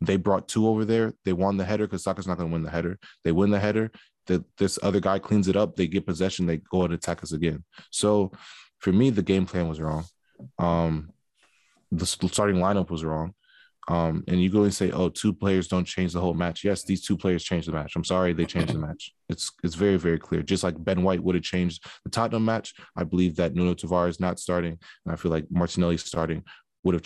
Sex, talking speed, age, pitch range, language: male, 240 wpm, 20-39, 85-95 Hz, English